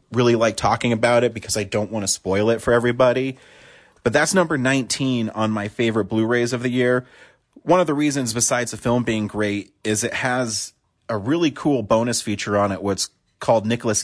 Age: 30-49